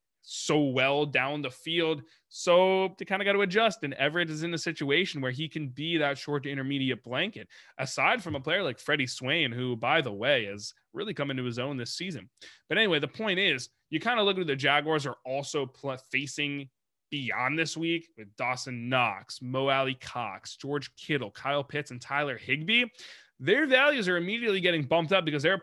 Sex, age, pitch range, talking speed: male, 20-39, 125-165 Hz, 205 wpm